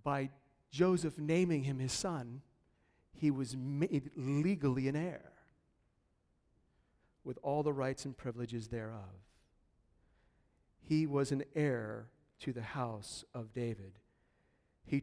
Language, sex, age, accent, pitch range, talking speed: English, male, 50-69, American, 120-155 Hz, 115 wpm